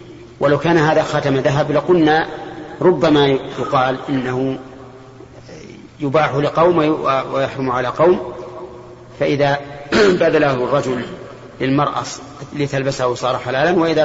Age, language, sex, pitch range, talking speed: 40-59, Arabic, male, 130-150 Hz, 95 wpm